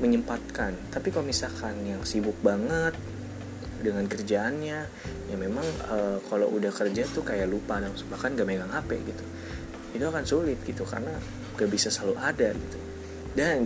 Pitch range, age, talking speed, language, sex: 95-130 Hz, 20-39, 150 wpm, Indonesian, male